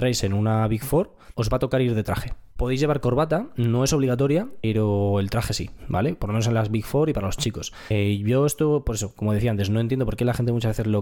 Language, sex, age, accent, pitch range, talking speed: Spanish, male, 20-39, Spanish, 105-130 Hz, 280 wpm